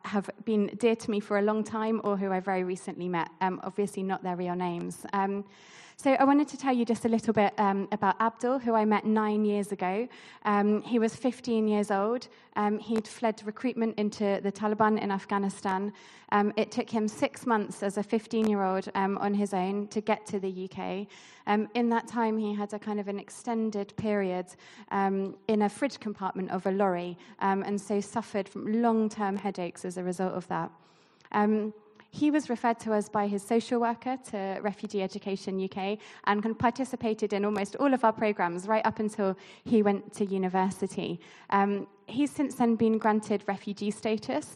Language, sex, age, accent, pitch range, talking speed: English, female, 20-39, British, 195-220 Hz, 190 wpm